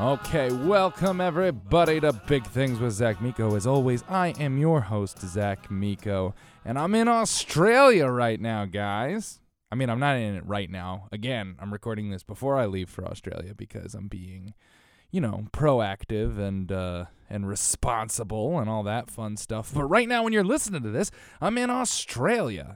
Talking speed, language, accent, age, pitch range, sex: 175 wpm, English, American, 20-39, 100-140 Hz, male